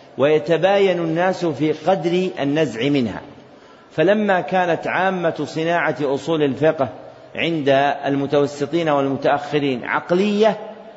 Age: 50-69